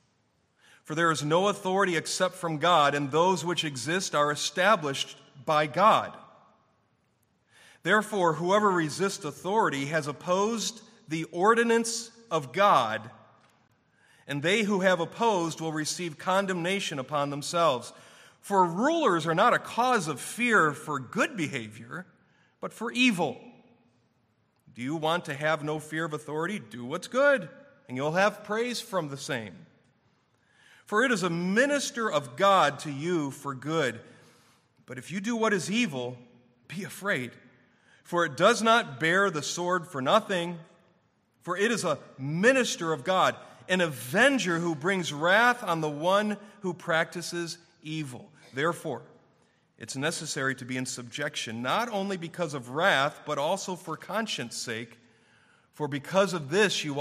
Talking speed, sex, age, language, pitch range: 145 wpm, male, 40-59, English, 145-200 Hz